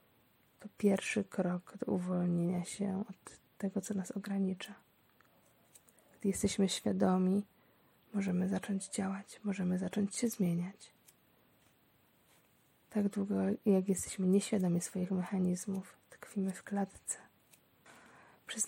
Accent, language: native, Polish